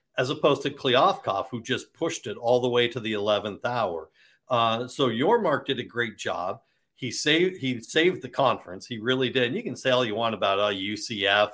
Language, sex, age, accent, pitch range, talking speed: English, male, 50-69, American, 115-140 Hz, 220 wpm